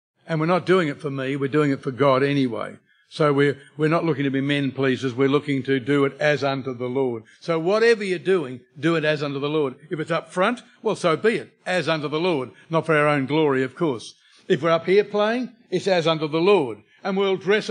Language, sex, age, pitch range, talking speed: English, male, 60-79, 130-170 Hz, 245 wpm